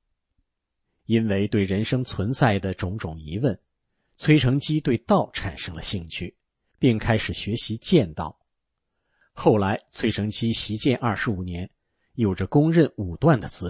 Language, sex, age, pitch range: Chinese, male, 50-69, 90-130 Hz